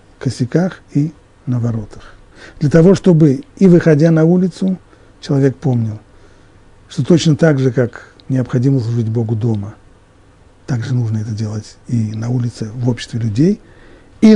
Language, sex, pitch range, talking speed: Russian, male, 100-145 Hz, 140 wpm